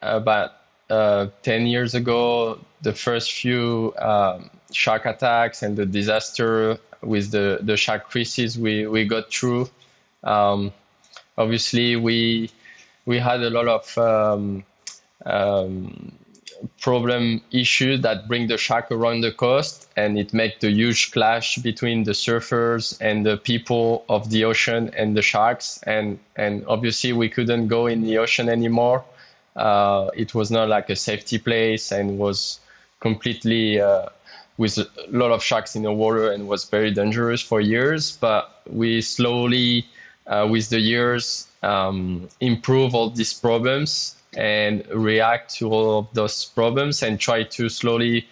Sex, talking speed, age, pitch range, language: male, 150 wpm, 20-39, 105-120 Hz, English